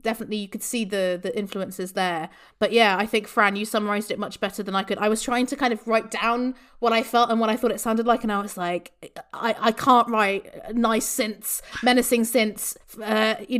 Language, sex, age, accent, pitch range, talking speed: English, female, 30-49, British, 200-245 Hz, 235 wpm